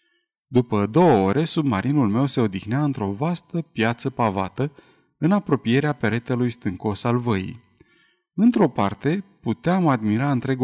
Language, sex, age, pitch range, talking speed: Romanian, male, 30-49, 110-155 Hz, 125 wpm